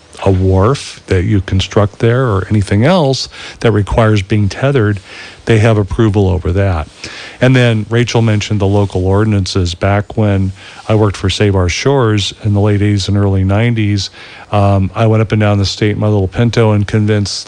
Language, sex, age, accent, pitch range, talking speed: English, male, 40-59, American, 100-115 Hz, 180 wpm